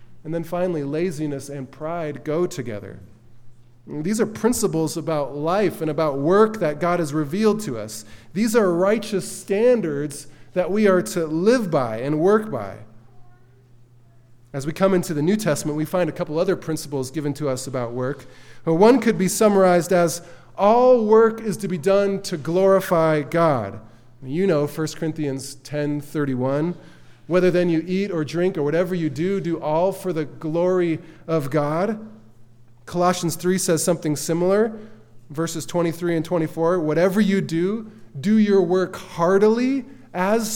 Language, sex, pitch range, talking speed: English, male, 150-200 Hz, 155 wpm